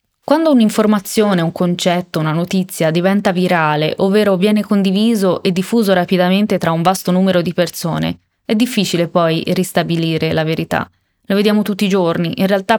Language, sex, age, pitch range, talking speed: Italian, female, 20-39, 180-215 Hz, 155 wpm